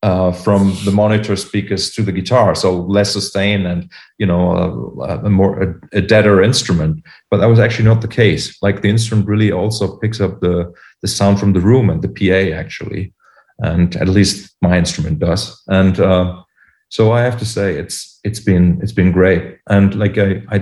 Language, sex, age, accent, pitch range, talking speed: English, male, 40-59, German, 90-105 Hz, 200 wpm